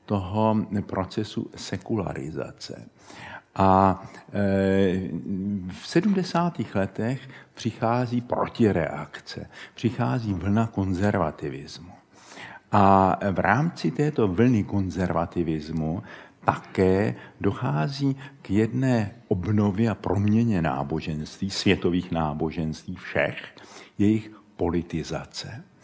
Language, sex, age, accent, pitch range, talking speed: Czech, male, 60-79, native, 90-110 Hz, 70 wpm